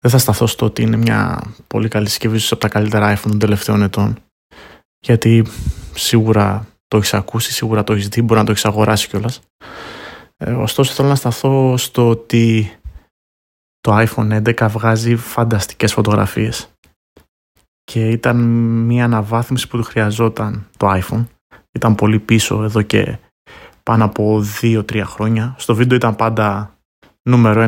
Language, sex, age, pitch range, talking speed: Greek, male, 20-39, 105-120 Hz, 150 wpm